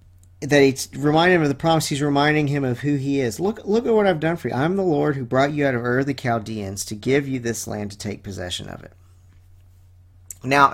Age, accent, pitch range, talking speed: 40-59, American, 95-140 Hz, 245 wpm